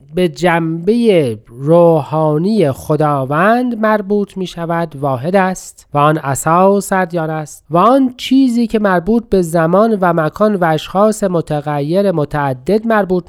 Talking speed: 120 wpm